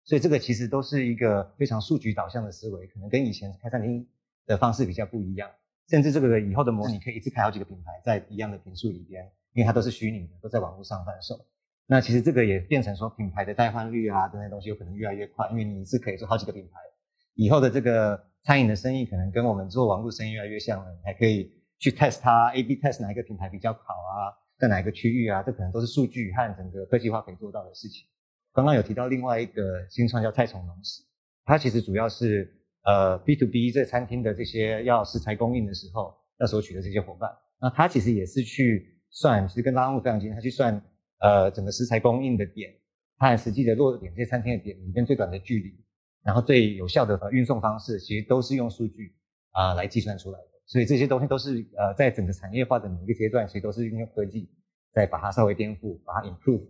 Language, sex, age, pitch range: Chinese, male, 30-49, 100-125 Hz